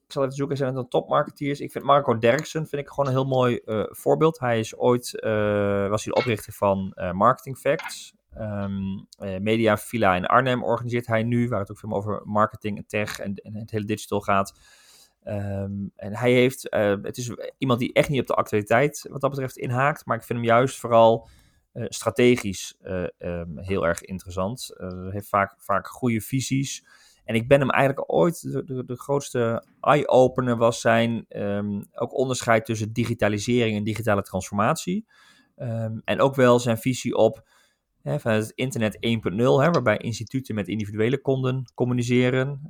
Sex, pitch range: male, 105-130 Hz